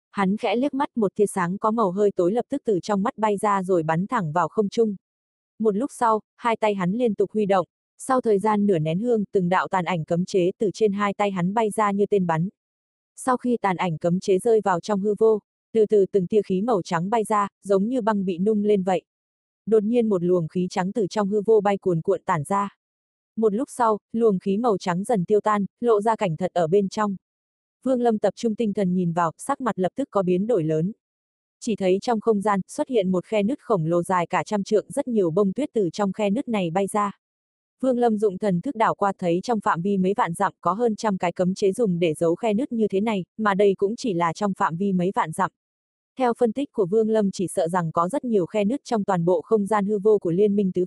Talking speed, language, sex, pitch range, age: 265 wpm, Vietnamese, female, 185-220 Hz, 20-39